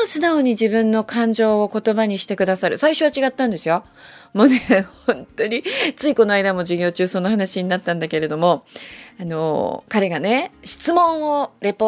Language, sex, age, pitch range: Japanese, female, 20-39, 190-255 Hz